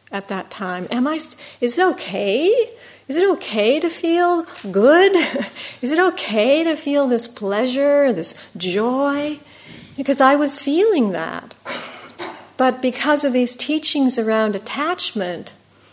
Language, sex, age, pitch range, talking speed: English, female, 50-69, 200-270 Hz, 130 wpm